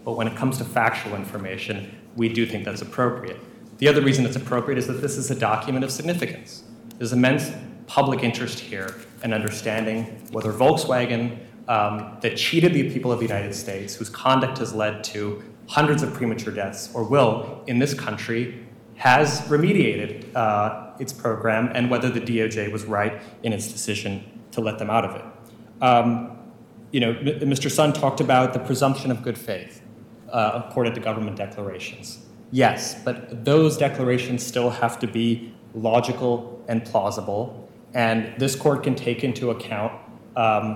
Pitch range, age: 110-125 Hz, 30-49